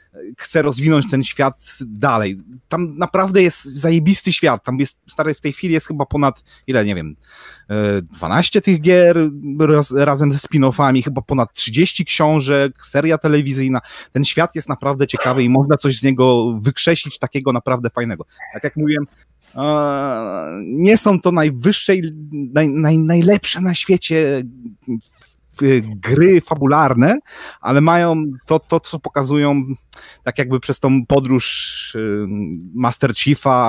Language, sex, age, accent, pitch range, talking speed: Polish, male, 30-49, native, 125-155 Hz, 135 wpm